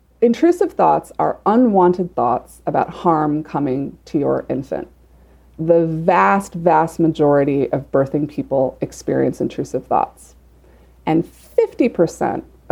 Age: 30-49